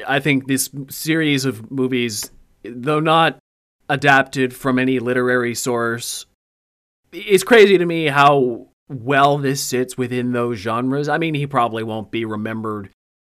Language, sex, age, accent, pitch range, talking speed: English, male, 30-49, American, 110-130 Hz, 140 wpm